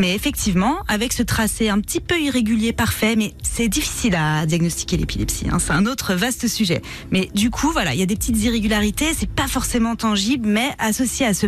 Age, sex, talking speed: 20-39, female, 210 wpm